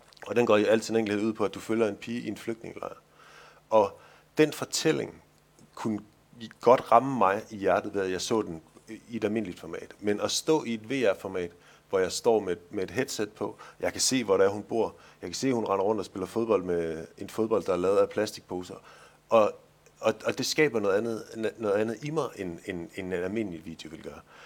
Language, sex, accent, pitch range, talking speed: Danish, male, native, 90-115 Hz, 230 wpm